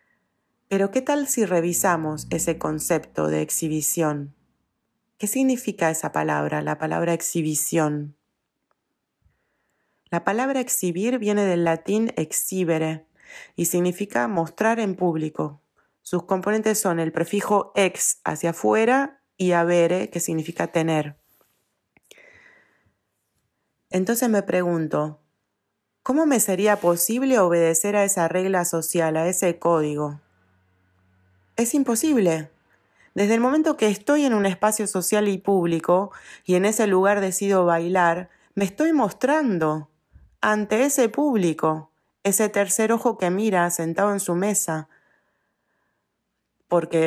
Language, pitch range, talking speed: Spanish, 160-210 Hz, 115 wpm